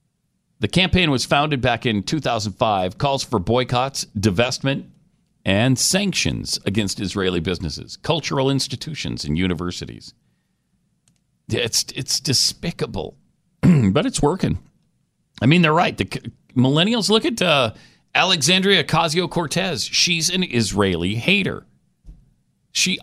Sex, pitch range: male, 100-145 Hz